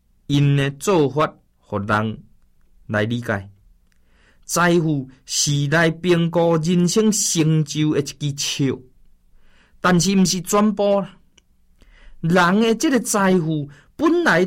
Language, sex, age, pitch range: Chinese, male, 20-39, 115-175 Hz